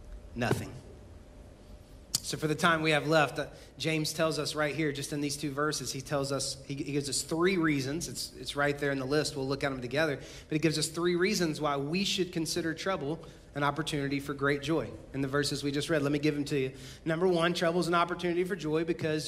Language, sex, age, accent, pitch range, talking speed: English, male, 30-49, American, 145-180 Hz, 240 wpm